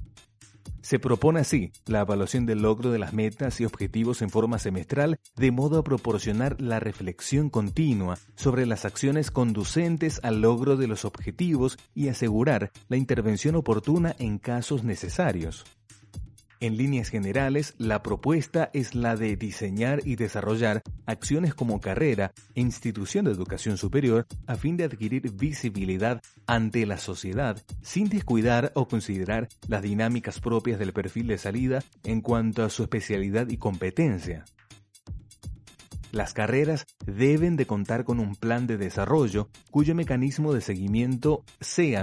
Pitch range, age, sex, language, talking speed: 105-135 Hz, 30-49, male, Spanish, 140 wpm